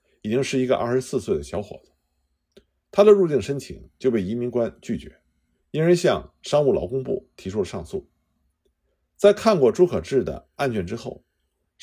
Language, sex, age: Chinese, male, 50-69